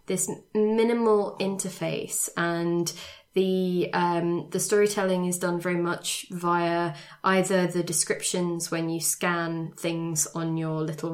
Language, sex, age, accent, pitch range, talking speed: English, female, 20-39, British, 165-190 Hz, 125 wpm